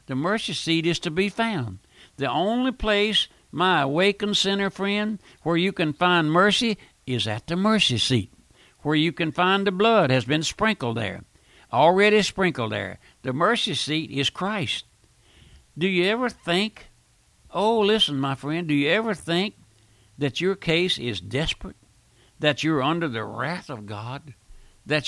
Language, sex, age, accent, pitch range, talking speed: English, male, 60-79, American, 125-180 Hz, 160 wpm